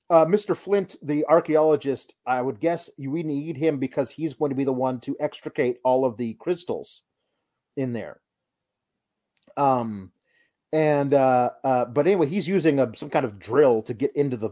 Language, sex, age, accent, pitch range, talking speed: English, male, 30-49, American, 120-165 Hz, 180 wpm